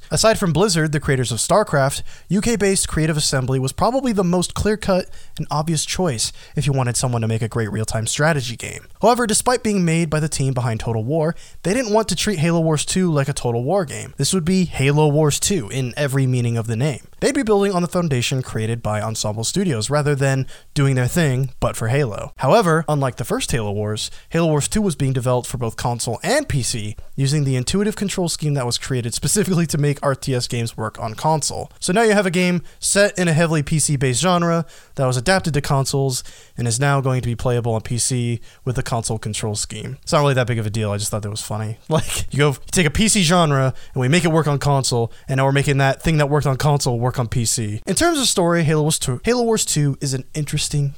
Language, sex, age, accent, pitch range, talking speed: English, male, 20-39, American, 120-165 Hz, 235 wpm